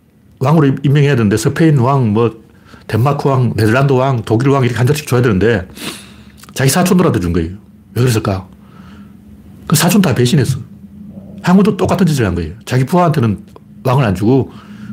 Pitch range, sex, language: 105-155 Hz, male, Korean